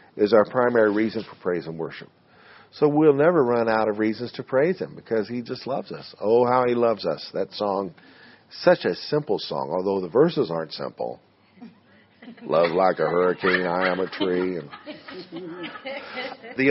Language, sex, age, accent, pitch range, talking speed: English, male, 50-69, American, 105-140 Hz, 175 wpm